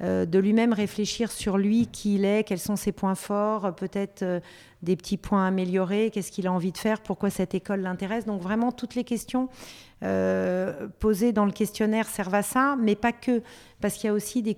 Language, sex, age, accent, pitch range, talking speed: French, female, 40-59, French, 180-215 Hz, 205 wpm